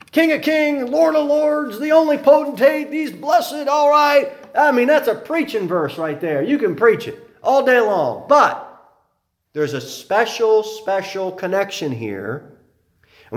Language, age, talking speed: English, 40-59, 160 wpm